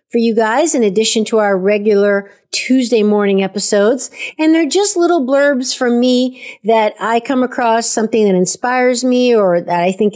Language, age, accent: English, 50-69, American